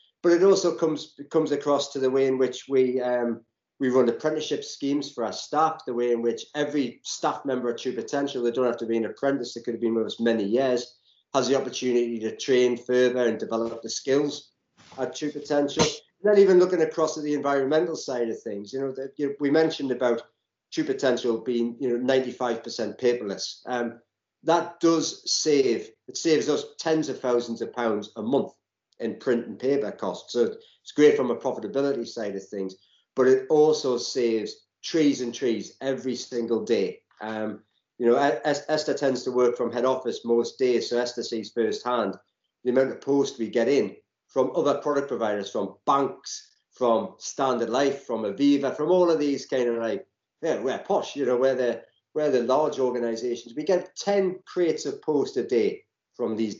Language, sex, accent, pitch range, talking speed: English, male, British, 120-155 Hz, 195 wpm